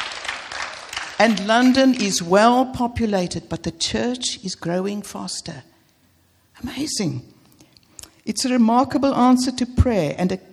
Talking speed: 115 wpm